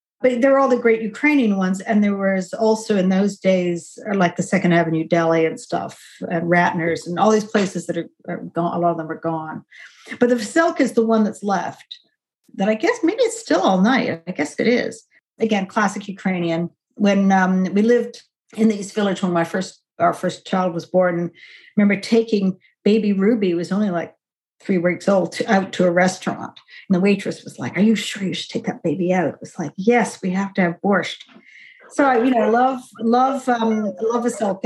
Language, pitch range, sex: English, 185-240 Hz, female